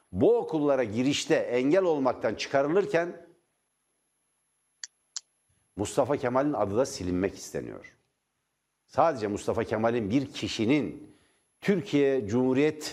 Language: Turkish